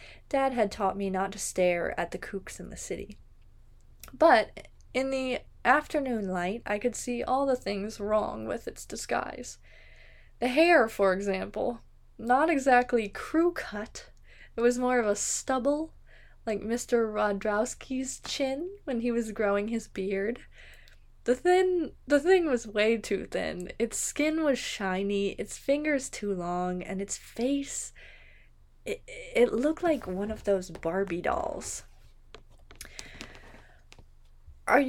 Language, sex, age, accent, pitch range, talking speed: English, female, 20-39, American, 190-270 Hz, 140 wpm